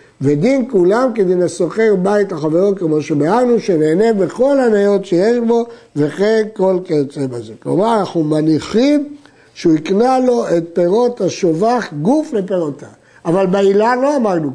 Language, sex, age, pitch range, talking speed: Hebrew, male, 60-79, 170-225 Hz, 130 wpm